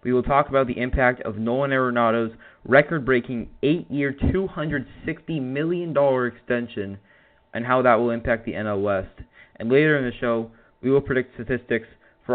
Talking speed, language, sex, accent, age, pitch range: 155 wpm, English, male, American, 20-39, 120-140 Hz